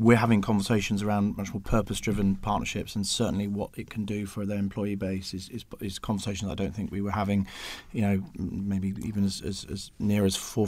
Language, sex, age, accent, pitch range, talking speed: English, male, 30-49, British, 100-110 Hz, 215 wpm